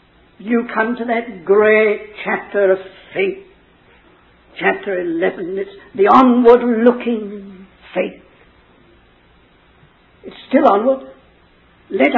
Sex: female